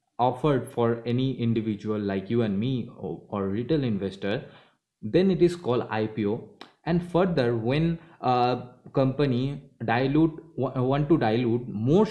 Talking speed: 135 wpm